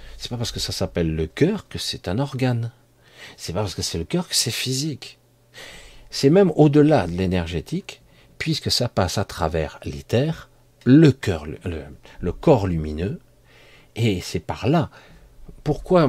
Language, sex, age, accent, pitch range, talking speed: French, male, 50-69, French, 90-130 Hz, 165 wpm